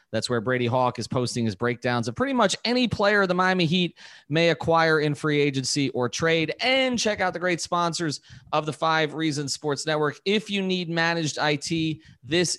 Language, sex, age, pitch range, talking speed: English, male, 30-49, 125-165 Hz, 195 wpm